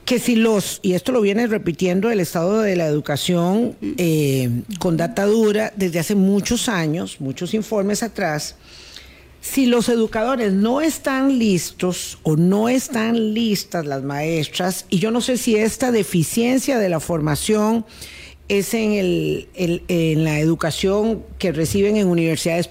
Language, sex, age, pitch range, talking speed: Spanish, female, 50-69, 170-235 Hz, 150 wpm